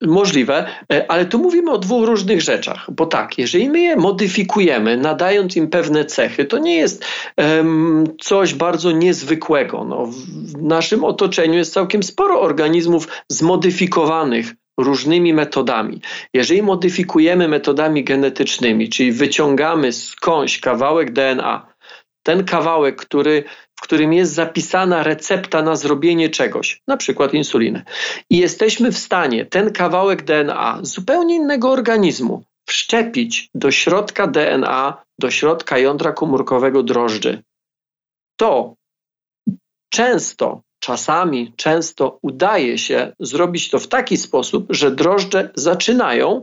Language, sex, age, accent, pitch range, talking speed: Polish, male, 40-59, native, 150-205 Hz, 120 wpm